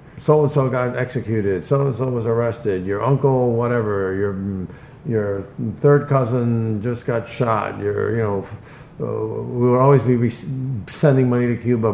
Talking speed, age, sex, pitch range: 135 wpm, 50-69, male, 100-135 Hz